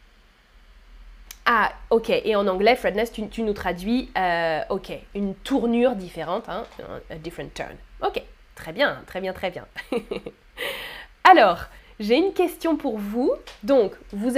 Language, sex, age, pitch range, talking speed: French, female, 20-39, 225-310 Hz, 140 wpm